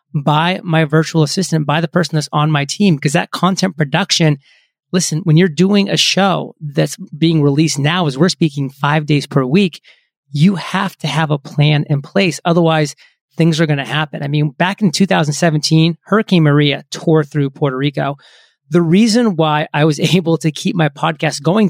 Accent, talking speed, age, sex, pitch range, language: American, 190 wpm, 30-49, male, 150-175 Hz, English